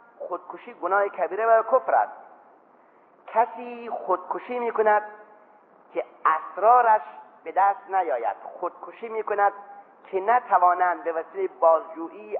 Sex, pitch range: male, 155-225 Hz